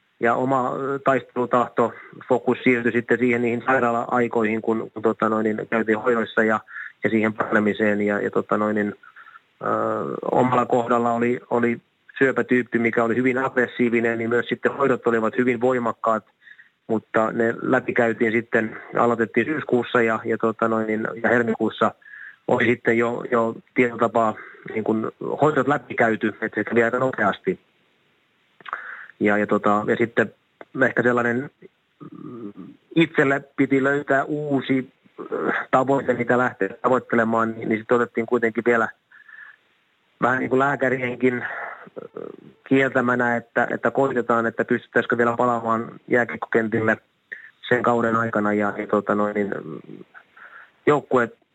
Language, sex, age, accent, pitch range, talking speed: Finnish, male, 30-49, native, 115-125 Hz, 120 wpm